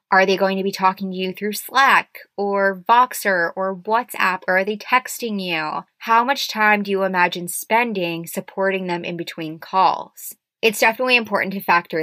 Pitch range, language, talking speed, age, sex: 175-215 Hz, English, 180 wpm, 20-39, female